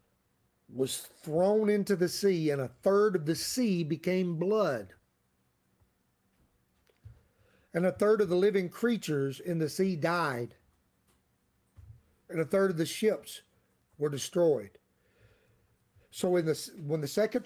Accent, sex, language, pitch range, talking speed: American, male, English, 145-205 Hz, 125 wpm